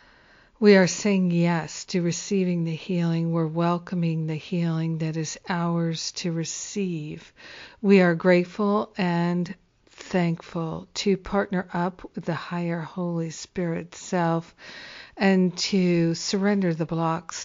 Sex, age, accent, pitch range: female, 50-69, American, 165-185 Hz